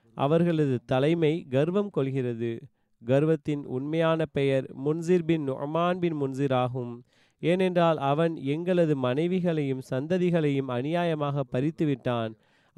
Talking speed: 80 wpm